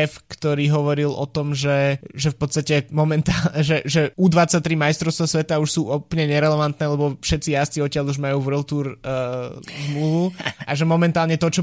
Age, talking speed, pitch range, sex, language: 20-39, 170 wpm, 140-155 Hz, male, Slovak